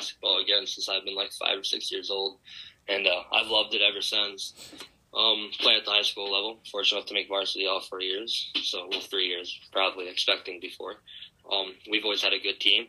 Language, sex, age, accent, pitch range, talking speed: English, male, 10-29, American, 95-105 Hz, 220 wpm